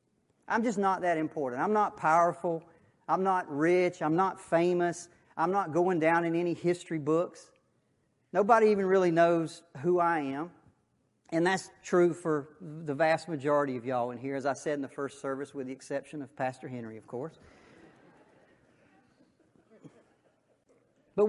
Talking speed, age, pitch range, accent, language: 160 wpm, 40-59, 150-205 Hz, American, English